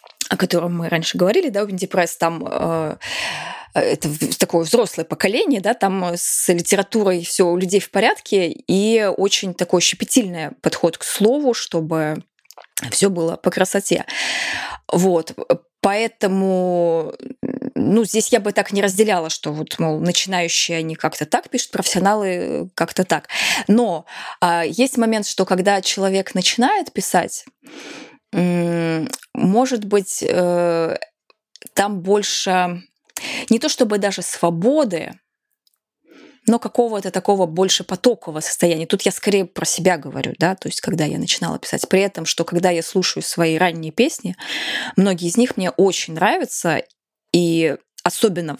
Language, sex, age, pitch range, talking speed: Russian, female, 20-39, 175-220 Hz, 135 wpm